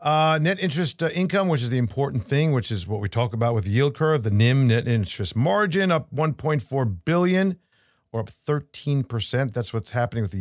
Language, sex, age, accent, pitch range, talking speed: English, male, 50-69, American, 115-155 Hz, 210 wpm